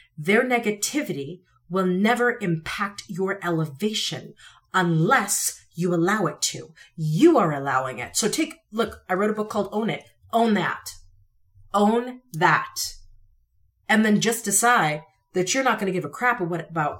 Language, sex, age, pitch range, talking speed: English, female, 40-59, 160-235 Hz, 150 wpm